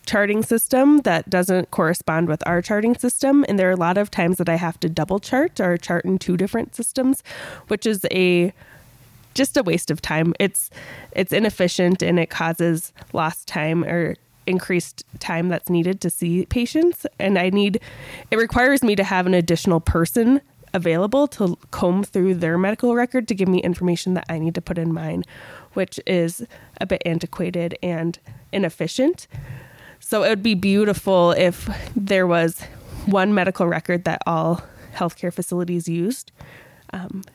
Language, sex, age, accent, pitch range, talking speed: English, female, 20-39, American, 165-195 Hz, 170 wpm